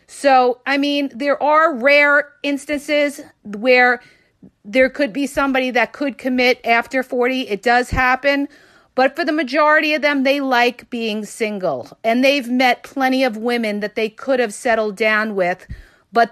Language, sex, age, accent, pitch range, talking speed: English, female, 40-59, American, 235-295 Hz, 160 wpm